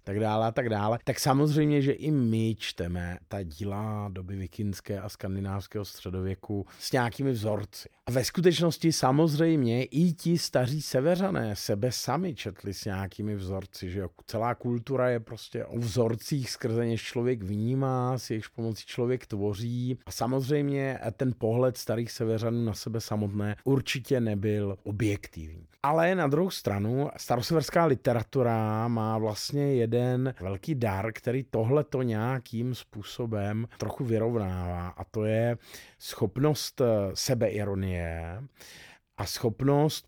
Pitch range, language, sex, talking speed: 105-130 Hz, Czech, male, 130 wpm